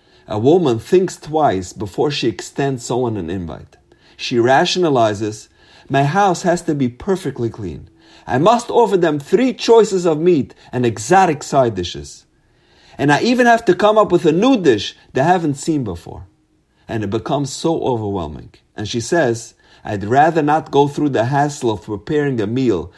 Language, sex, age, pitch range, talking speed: English, male, 50-69, 115-175 Hz, 170 wpm